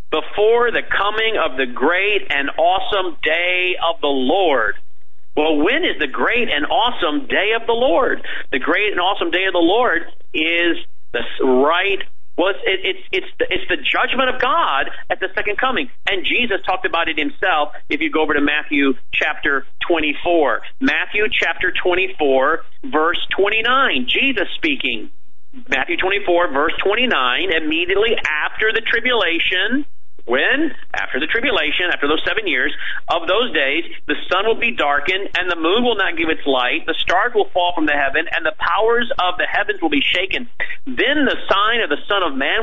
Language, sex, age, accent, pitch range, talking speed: English, male, 40-59, American, 165-270 Hz, 175 wpm